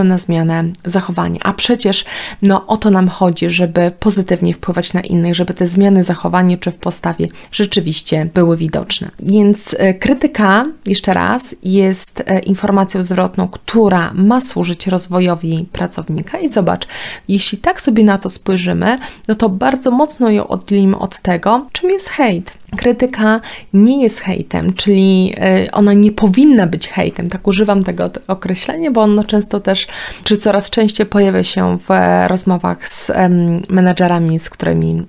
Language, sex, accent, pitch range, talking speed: Polish, female, native, 180-210 Hz, 145 wpm